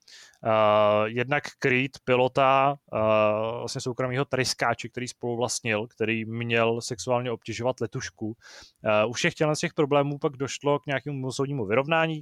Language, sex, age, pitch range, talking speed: Czech, male, 20-39, 110-135 Hz, 135 wpm